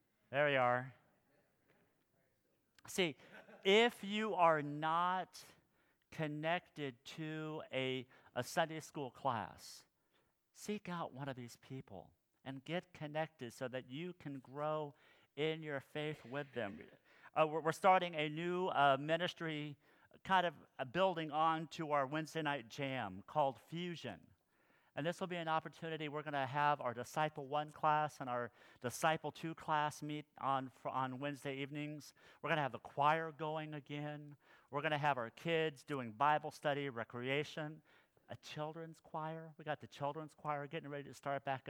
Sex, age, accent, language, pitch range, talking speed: male, 50-69, American, English, 130-160 Hz, 155 wpm